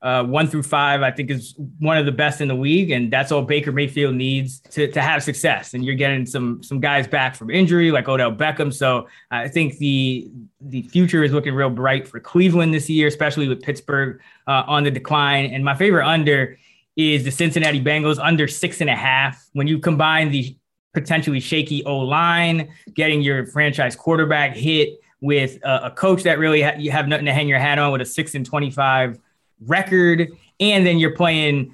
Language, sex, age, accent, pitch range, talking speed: English, male, 20-39, American, 135-160 Hz, 200 wpm